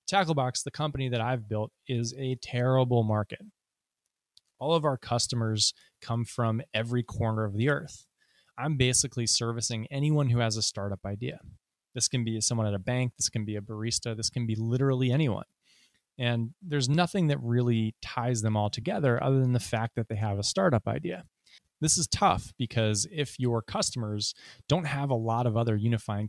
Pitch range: 110-135 Hz